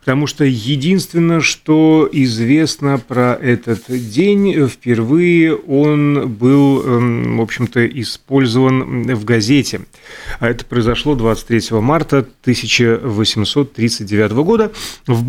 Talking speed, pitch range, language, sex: 85 wpm, 115-160 Hz, Russian, male